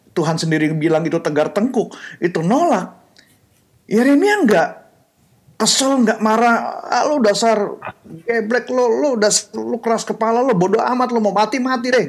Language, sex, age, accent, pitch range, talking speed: Indonesian, male, 30-49, native, 165-225 Hz, 155 wpm